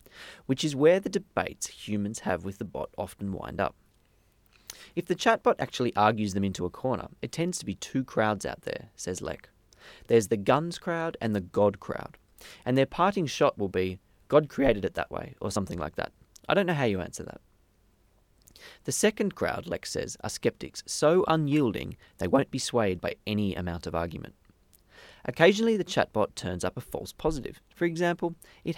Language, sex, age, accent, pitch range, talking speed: English, male, 30-49, Australian, 100-165 Hz, 190 wpm